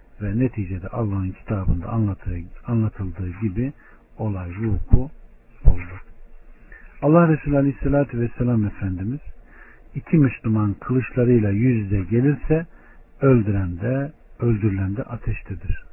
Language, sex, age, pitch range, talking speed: Turkish, male, 60-79, 100-130 Hz, 95 wpm